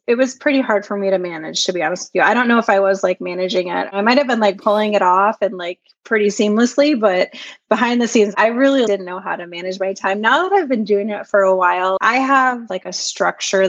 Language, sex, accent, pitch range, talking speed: English, female, American, 190-215 Hz, 270 wpm